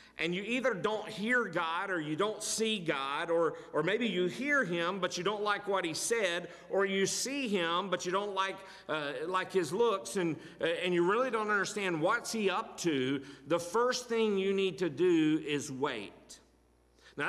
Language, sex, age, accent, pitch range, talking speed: English, male, 50-69, American, 145-185 Hz, 195 wpm